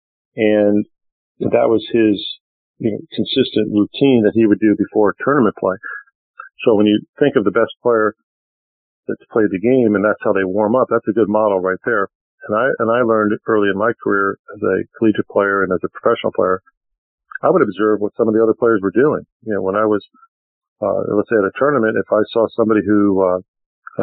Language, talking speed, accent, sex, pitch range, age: English, 205 wpm, American, male, 100-110 Hz, 50-69